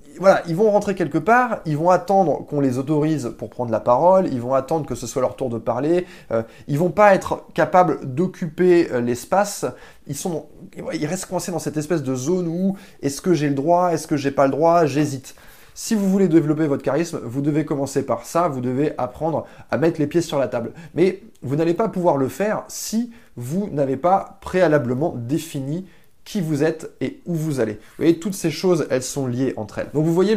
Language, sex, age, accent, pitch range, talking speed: French, male, 20-39, French, 130-180 Hz, 225 wpm